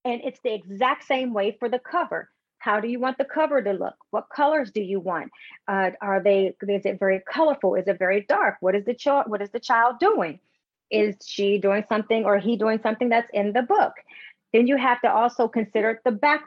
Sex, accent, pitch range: female, American, 205-255 Hz